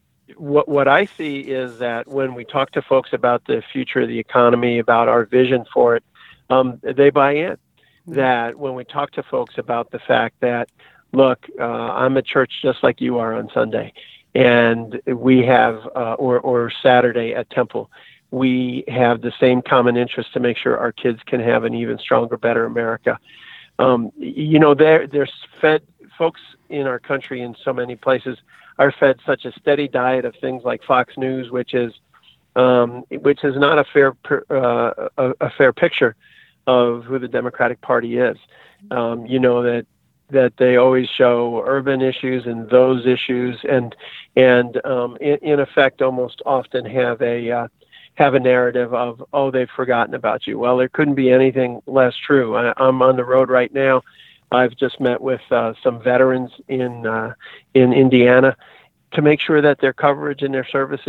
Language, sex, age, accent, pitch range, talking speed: English, male, 50-69, American, 120-135 Hz, 180 wpm